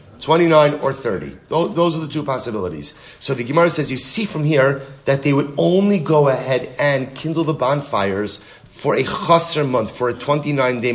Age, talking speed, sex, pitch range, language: 30-49, 180 wpm, male, 130-165 Hz, English